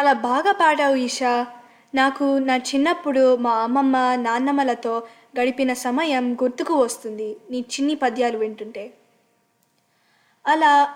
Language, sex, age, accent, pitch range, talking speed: Telugu, female, 20-39, native, 240-290 Hz, 105 wpm